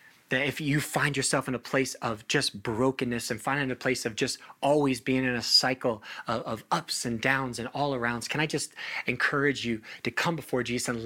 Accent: American